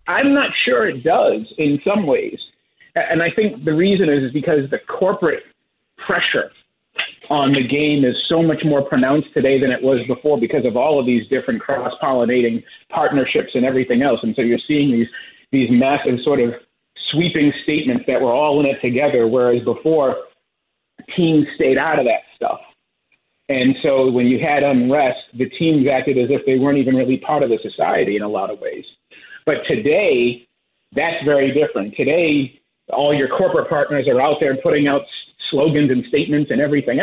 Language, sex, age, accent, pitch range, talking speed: English, male, 50-69, American, 130-160 Hz, 180 wpm